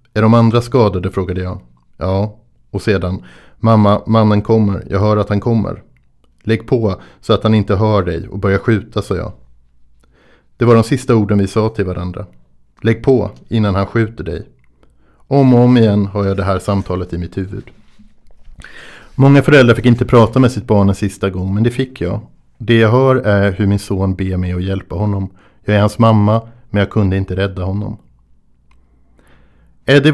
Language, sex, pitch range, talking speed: Swedish, male, 95-115 Hz, 190 wpm